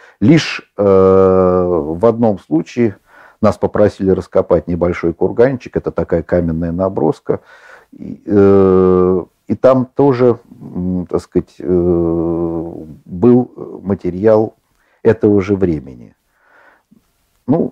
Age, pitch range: 50-69, 90-110 Hz